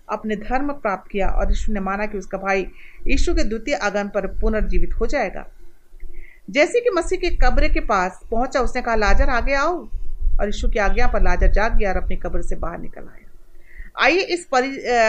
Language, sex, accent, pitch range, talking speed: Hindi, female, native, 215-320 Hz, 200 wpm